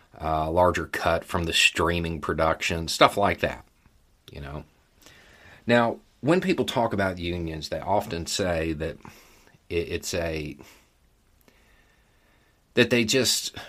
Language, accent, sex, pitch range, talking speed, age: English, American, male, 80-105 Hz, 125 wpm, 40-59